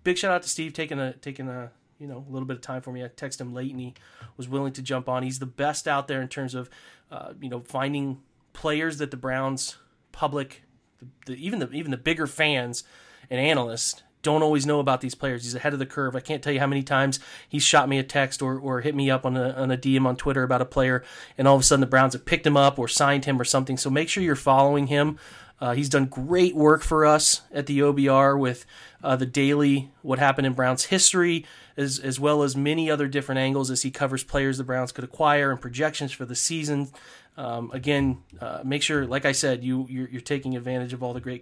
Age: 30-49